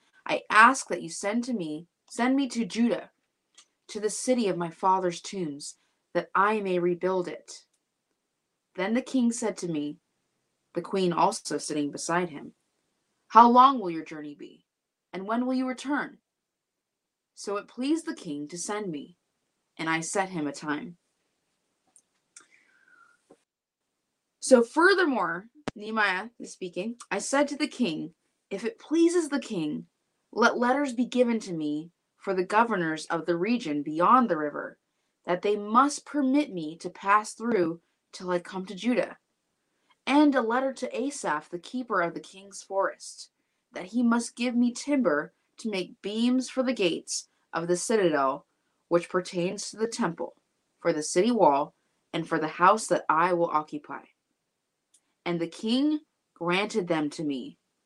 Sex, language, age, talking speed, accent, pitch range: female, English, 20-39, 160 wpm, American, 170-250 Hz